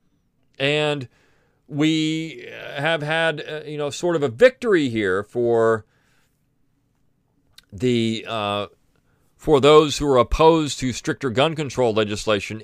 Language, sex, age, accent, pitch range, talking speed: English, male, 40-59, American, 110-150 Hz, 115 wpm